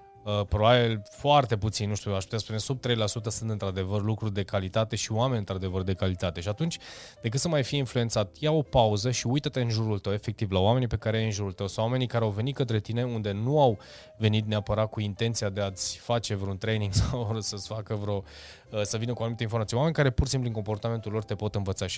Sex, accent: male, native